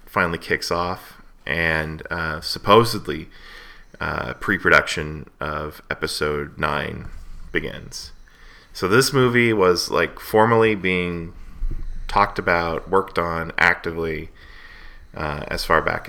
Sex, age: male, 20-39